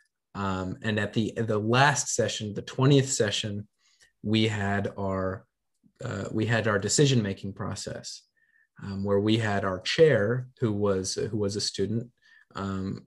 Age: 30-49